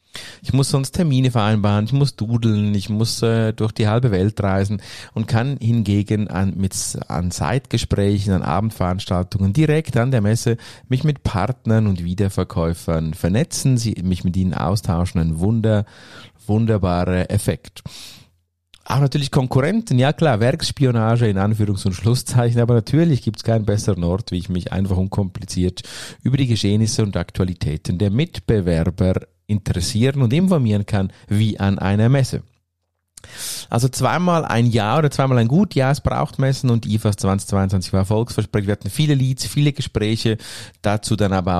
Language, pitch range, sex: German, 95-115 Hz, male